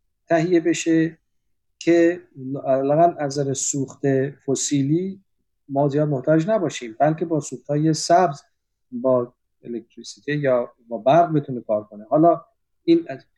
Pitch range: 125-170 Hz